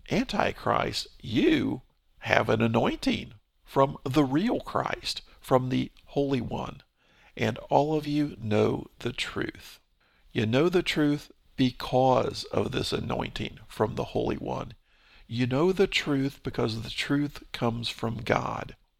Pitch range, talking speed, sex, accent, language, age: 115-145 Hz, 135 wpm, male, American, English, 50-69